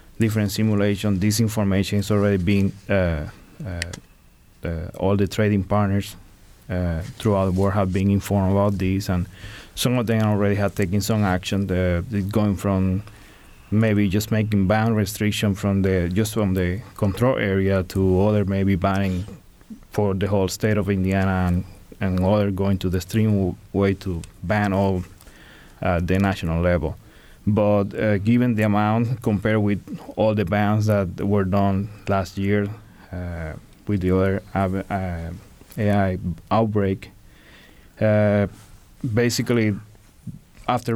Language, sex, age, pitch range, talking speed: English, male, 30-49, 95-110 Hz, 140 wpm